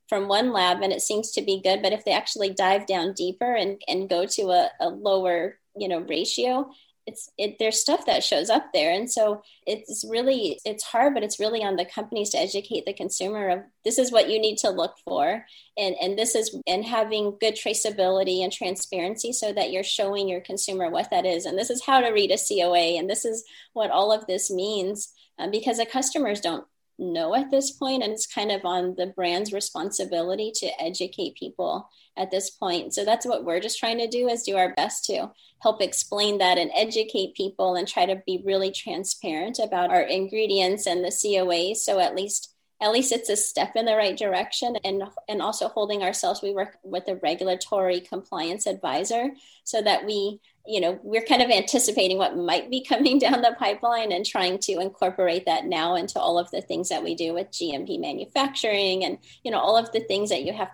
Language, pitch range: English, 185-230 Hz